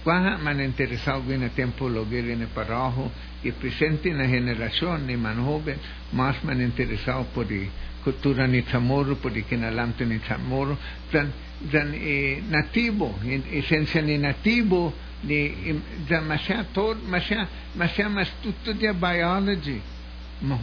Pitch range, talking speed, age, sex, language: 125-165 Hz, 120 wpm, 60-79, male, English